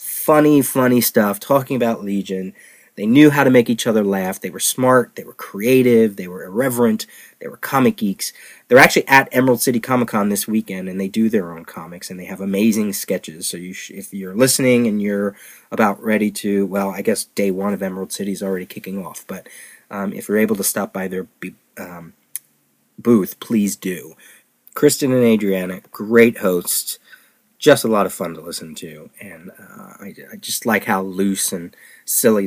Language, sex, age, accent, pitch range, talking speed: English, male, 30-49, American, 95-125 Hz, 190 wpm